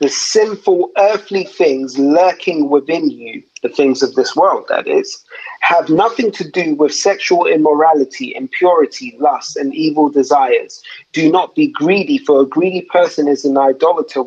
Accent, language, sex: British, English, male